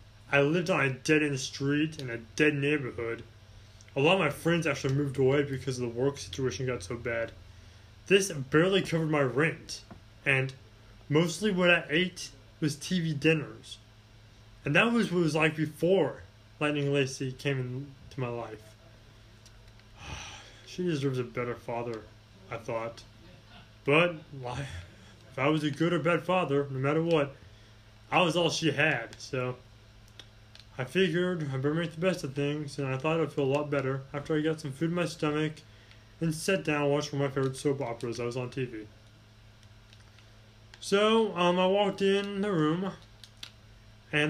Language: English